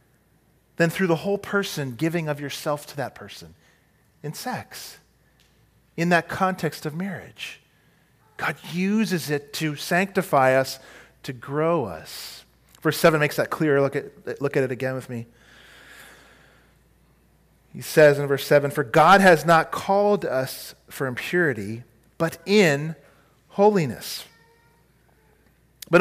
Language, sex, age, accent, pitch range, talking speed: English, male, 40-59, American, 145-200 Hz, 130 wpm